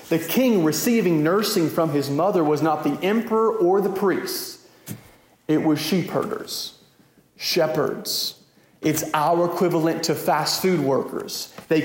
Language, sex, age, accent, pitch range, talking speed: English, male, 40-59, American, 145-175 Hz, 130 wpm